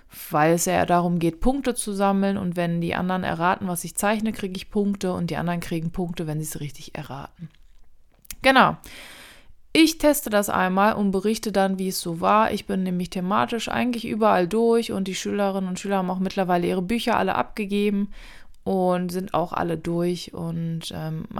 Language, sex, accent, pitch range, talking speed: German, female, German, 175-215 Hz, 190 wpm